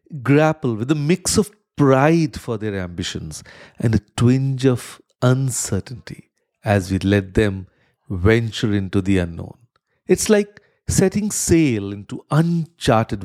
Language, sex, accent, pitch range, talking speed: English, male, Indian, 105-145 Hz, 125 wpm